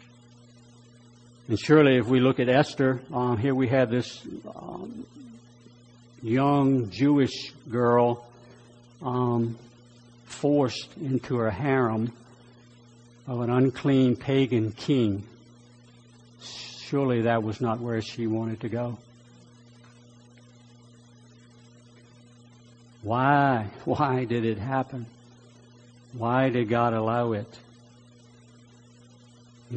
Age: 60-79